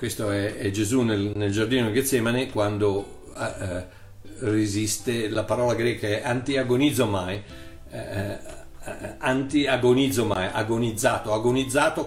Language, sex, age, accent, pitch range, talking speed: Italian, male, 50-69, native, 105-135 Hz, 115 wpm